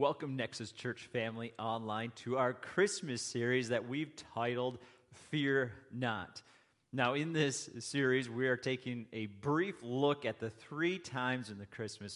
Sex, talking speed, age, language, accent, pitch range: male, 155 wpm, 30-49, English, American, 115-145 Hz